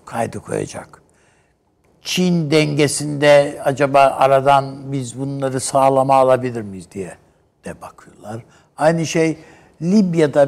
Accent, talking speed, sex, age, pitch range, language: native, 95 wpm, male, 60-79, 140-190 Hz, Turkish